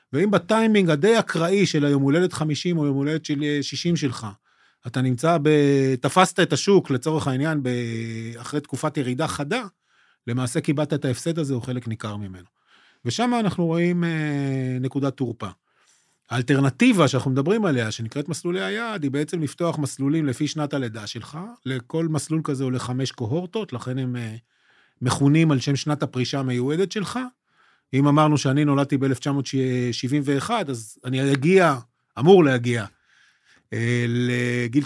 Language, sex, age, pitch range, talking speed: Hebrew, male, 30-49, 125-170 Hz, 140 wpm